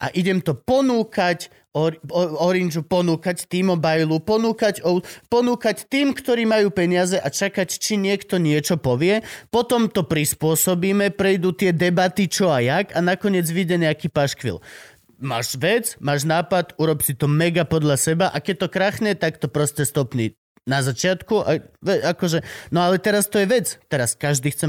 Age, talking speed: 30-49, 165 wpm